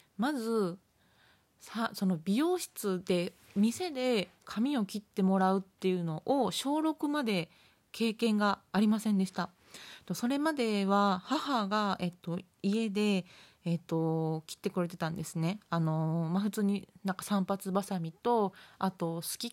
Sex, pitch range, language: female, 175-215 Hz, Japanese